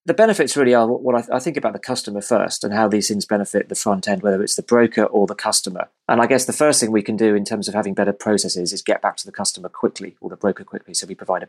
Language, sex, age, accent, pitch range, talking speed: English, male, 30-49, British, 100-120 Hz, 305 wpm